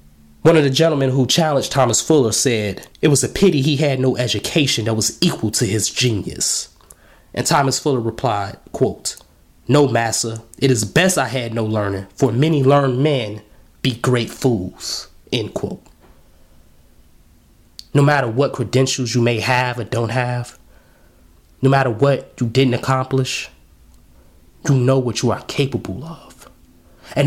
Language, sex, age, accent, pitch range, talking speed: English, male, 20-39, American, 100-140 Hz, 155 wpm